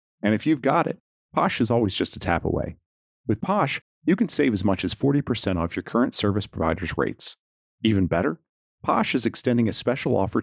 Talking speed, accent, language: 200 wpm, American, English